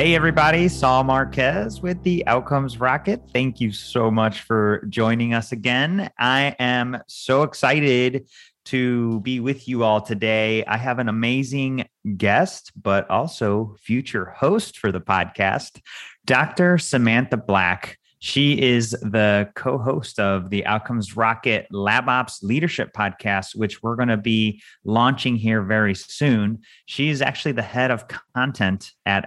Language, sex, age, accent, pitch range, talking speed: English, male, 30-49, American, 105-130 Hz, 140 wpm